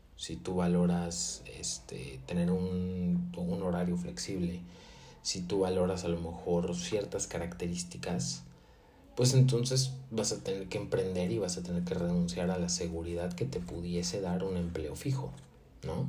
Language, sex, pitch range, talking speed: Spanish, male, 85-95 Hz, 150 wpm